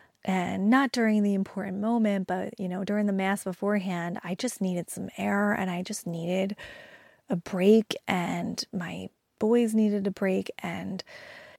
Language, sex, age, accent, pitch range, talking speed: English, female, 20-39, American, 185-215 Hz, 160 wpm